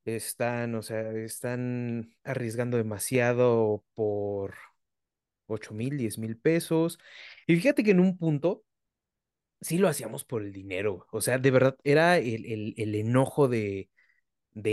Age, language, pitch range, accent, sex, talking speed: 30-49, Spanish, 110-140 Hz, Mexican, male, 140 wpm